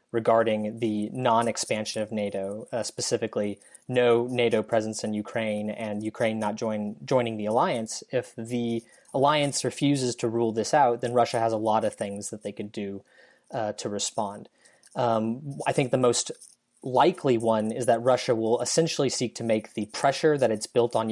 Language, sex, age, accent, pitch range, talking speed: English, male, 20-39, American, 105-120 Hz, 175 wpm